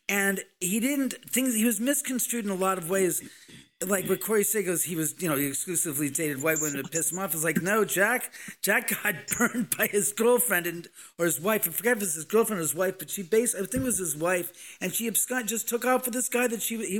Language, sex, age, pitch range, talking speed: English, male, 40-59, 155-205 Hz, 265 wpm